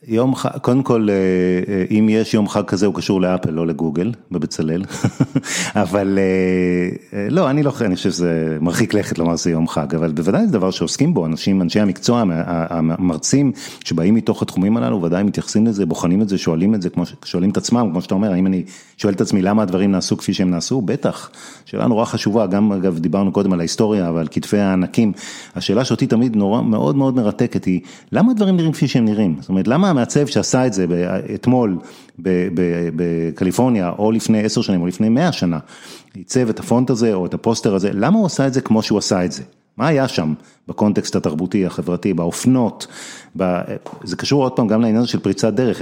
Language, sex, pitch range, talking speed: Hebrew, male, 90-115 Hz, 170 wpm